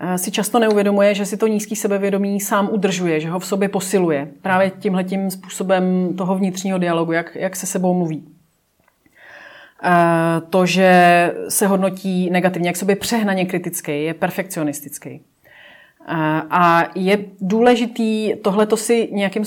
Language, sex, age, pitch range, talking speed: Czech, female, 30-49, 175-205 Hz, 135 wpm